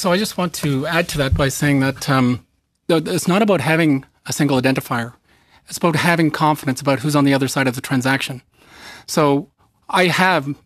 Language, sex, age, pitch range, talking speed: English, male, 40-59, 135-170 Hz, 195 wpm